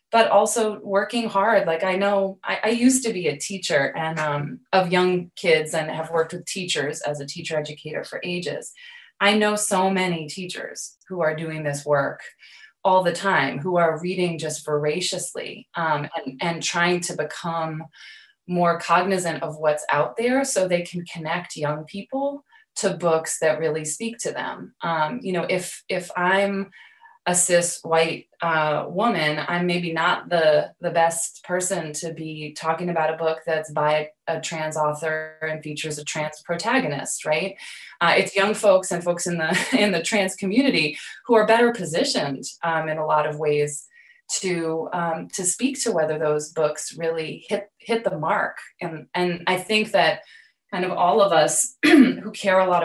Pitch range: 155-195 Hz